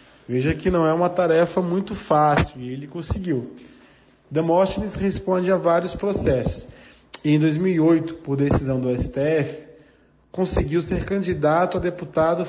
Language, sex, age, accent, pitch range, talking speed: Portuguese, male, 20-39, Brazilian, 140-165 Hz, 130 wpm